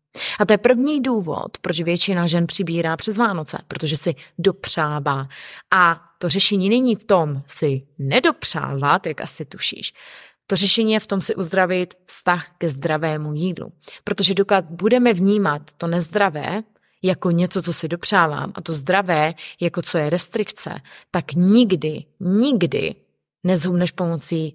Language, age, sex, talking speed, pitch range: Czech, 30-49, female, 145 wpm, 160-205 Hz